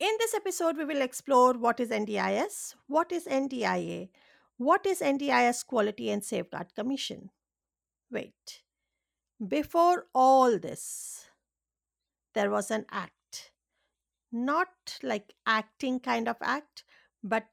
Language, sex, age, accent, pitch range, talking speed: English, female, 50-69, Indian, 220-290 Hz, 115 wpm